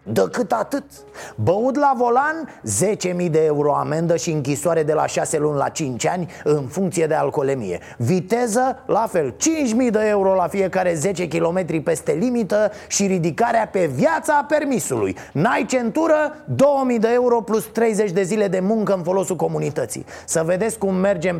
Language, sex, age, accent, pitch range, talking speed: Romanian, male, 30-49, native, 155-210 Hz, 170 wpm